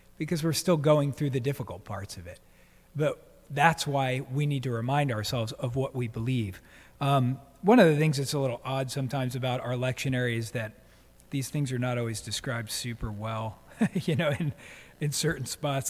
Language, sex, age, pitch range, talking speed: English, male, 40-59, 125-155 Hz, 195 wpm